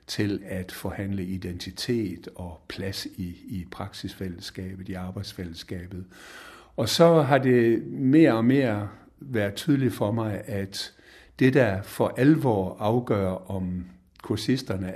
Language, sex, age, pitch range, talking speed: Danish, male, 60-79, 95-115 Hz, 120 wpm